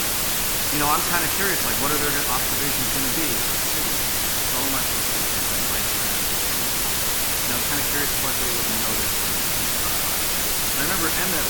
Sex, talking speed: male, 175 wpm